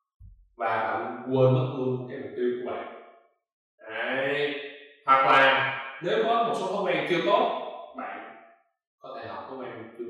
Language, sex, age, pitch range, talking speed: Vietnamese, male, 20-39, 115-180 Hz, 160 wpm